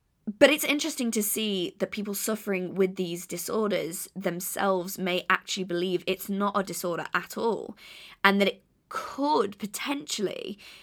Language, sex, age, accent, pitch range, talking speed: English, female, 20-39, British, 180-215 Hz, 145 wpm